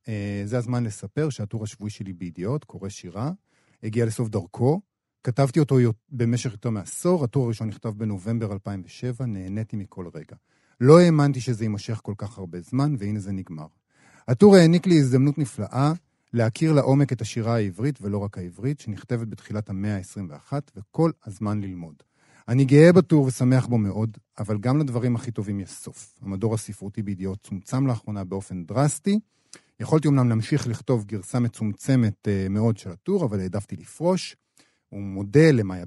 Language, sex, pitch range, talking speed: Hebrew, male, 105-135 Hz, 150 wpm